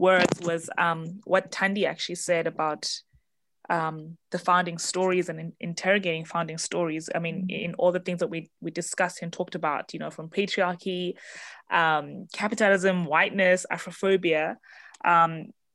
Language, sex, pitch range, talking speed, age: English, female, 160-185 Hz, 150 wpm, 20-39